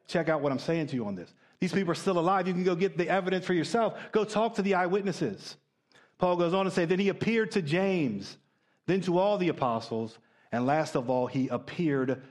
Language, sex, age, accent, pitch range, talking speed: English, male, 50-69, American, 145-190 Hz, 235 wpm